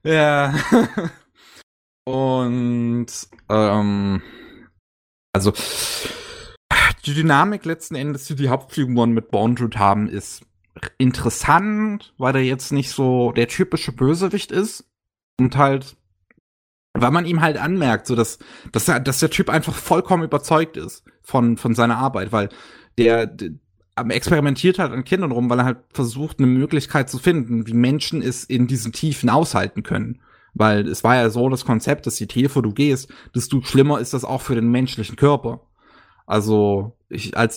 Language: German